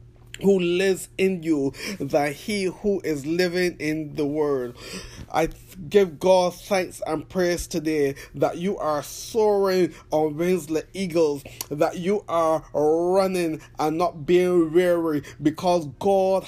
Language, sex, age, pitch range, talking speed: English, male, 20-39, 150-185 Hz, 130 wpm